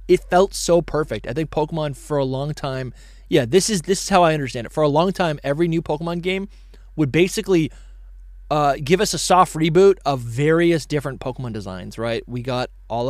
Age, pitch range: 20-39, 130-165 Hz